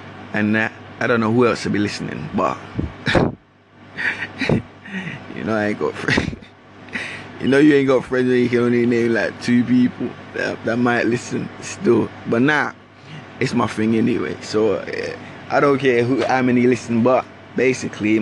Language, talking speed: English, 175 wpm